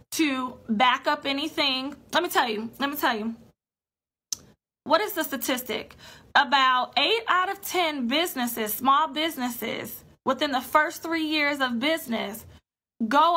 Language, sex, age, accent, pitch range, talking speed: English, female, 20-39, American, 250-315 Hz, 145 wpm